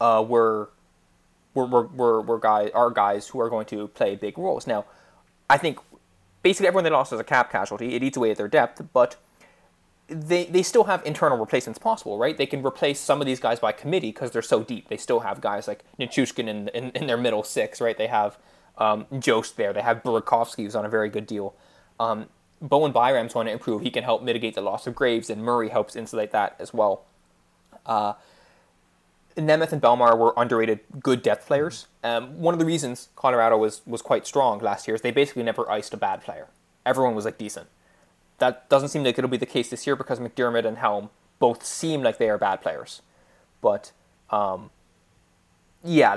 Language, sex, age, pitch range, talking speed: English, male, 20-39, 110-150 Hz, 205 wpm